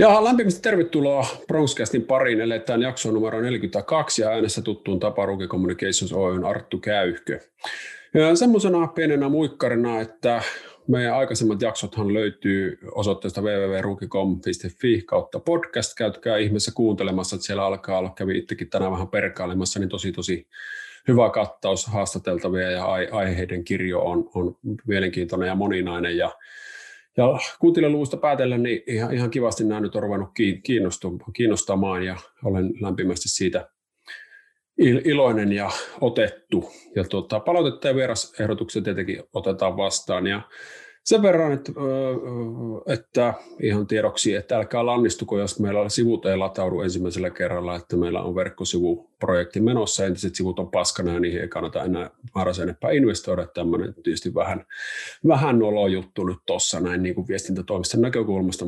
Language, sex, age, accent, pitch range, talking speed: Finnish, male, 30-49, native, 95-130 Hz, 130 wpm